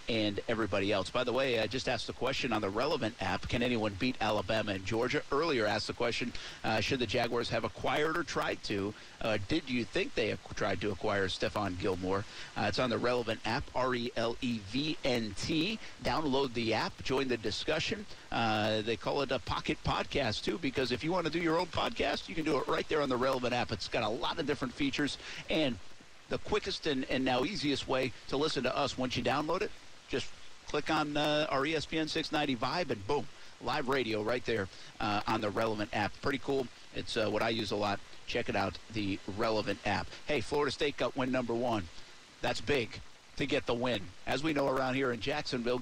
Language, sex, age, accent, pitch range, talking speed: English, male, 50-69, American, 110-140 Hz, 210 wpm